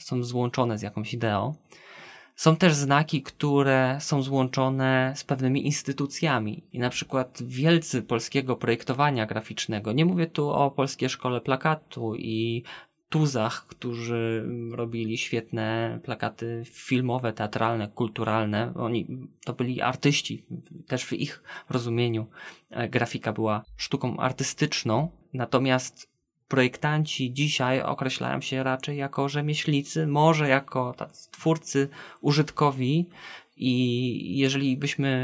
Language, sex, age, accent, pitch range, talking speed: Polish, male, 20-39, native, 115-140 Hz, 110 wpm